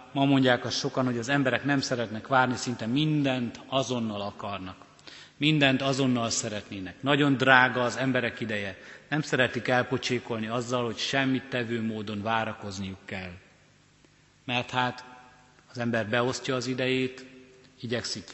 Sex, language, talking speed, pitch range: male, Hungarian, 130 wpm, 115-130 Hz